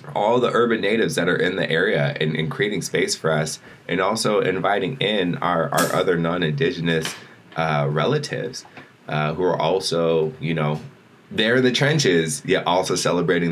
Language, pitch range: English, 75-95 Hz